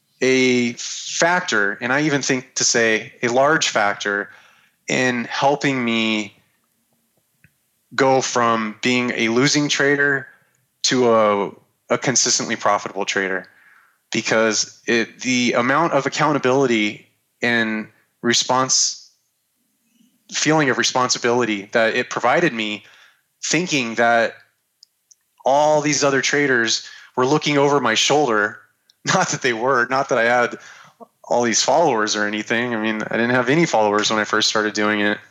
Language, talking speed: English, 135 wpm